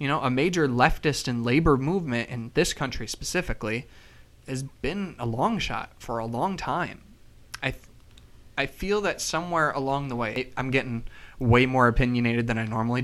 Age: 20-39